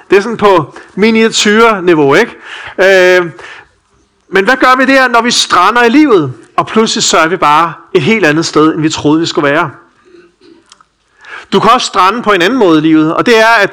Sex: male